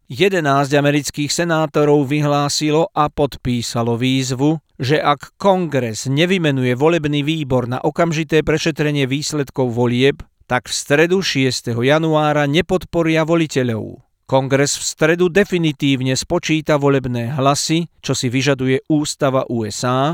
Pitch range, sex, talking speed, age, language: 130-155 Hz, male, 110 wpm, 40-59, Slovak